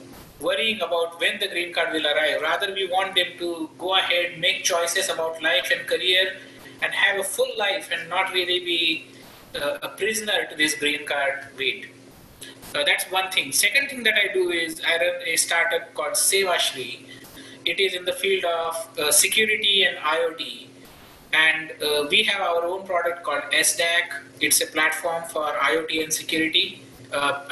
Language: English